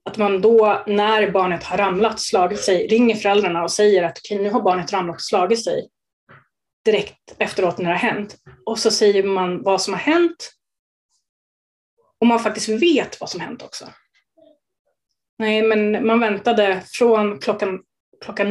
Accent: native